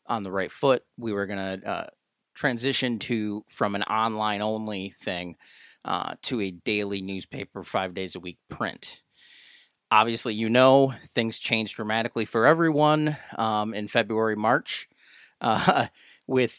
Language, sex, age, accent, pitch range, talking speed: English, male, 30-49, American, 105-130 Hz, 125 wpm